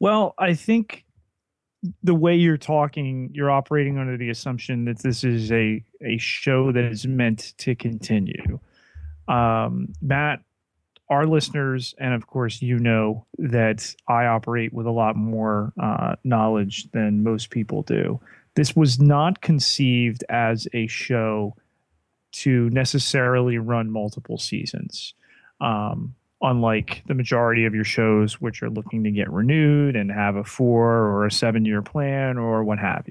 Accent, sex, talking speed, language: American, male, 145 wpm, English